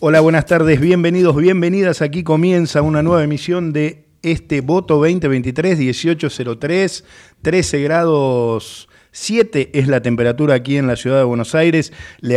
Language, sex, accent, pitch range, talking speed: Italian, male, Argentinian, 120-145 Hz, 135 wpm